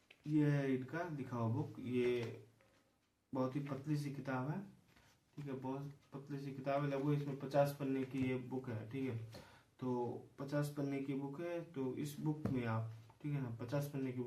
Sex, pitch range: male, 120-145 Hz